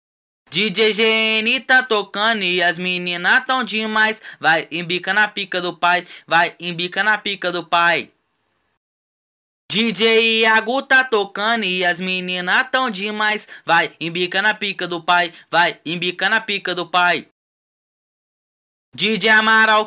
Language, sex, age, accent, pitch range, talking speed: English, male, 10-29, Brazilian, 175-220 Hz, 130 wpm